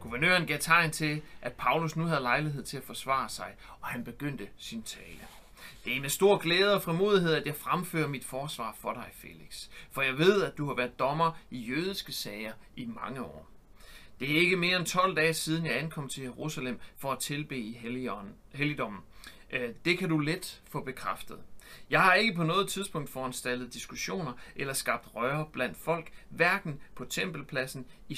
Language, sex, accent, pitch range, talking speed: Danish, male, native, 125-165 Hz, 185 wpm